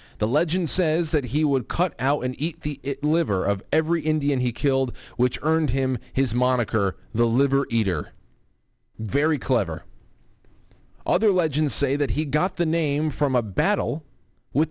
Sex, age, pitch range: male, 40-59, 115-150 Hz